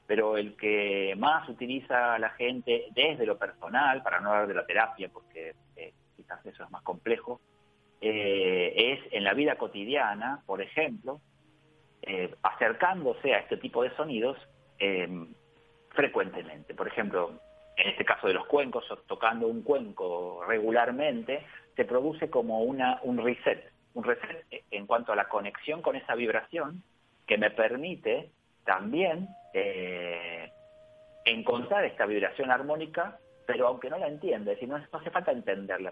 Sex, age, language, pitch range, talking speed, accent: male, 40-59, Spanish, 110-175 Hz, 150 wpm, Argentinian